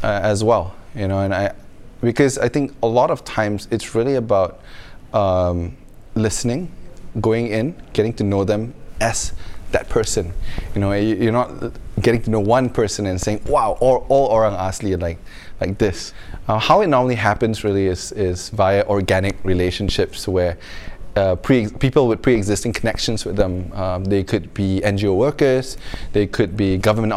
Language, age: Malay, 20-39